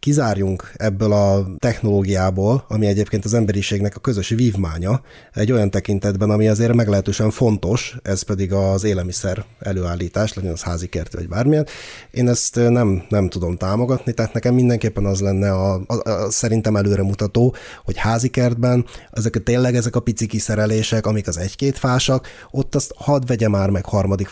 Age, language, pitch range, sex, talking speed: 30-49, Hungarian, 100-120 Hz, male, 165 wpm